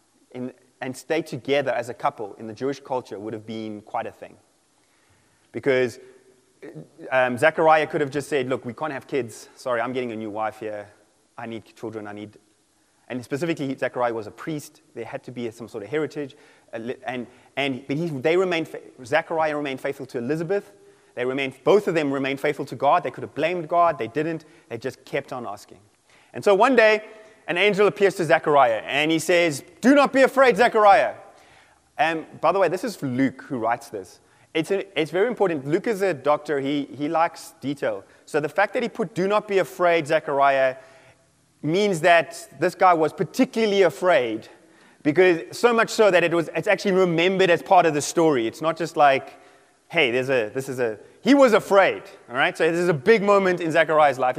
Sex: male